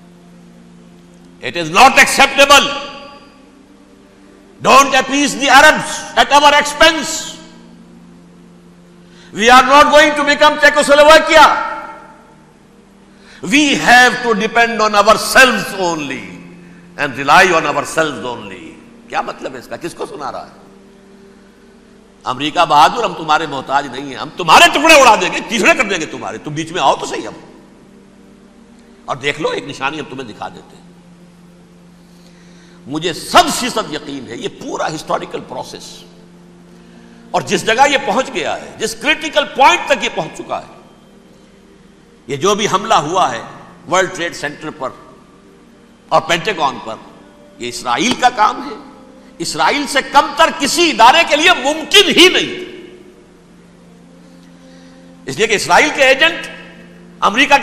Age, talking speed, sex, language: 60-79, 125 wpm, male, Urdu